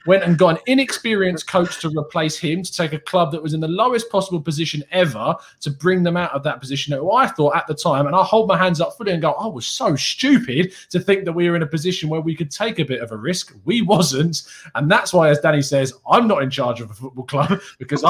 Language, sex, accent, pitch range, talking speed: English, male, British, 125-180 Hz, 270 wpm